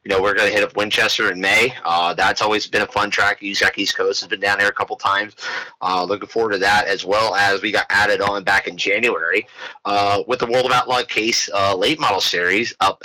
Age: 30-49